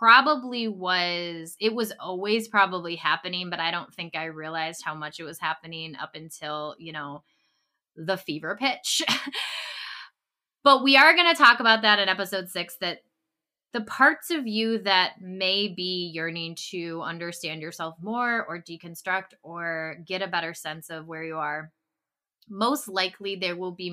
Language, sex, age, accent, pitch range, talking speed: English, female, 20-39, American, 160-215 Hz, 165 wpm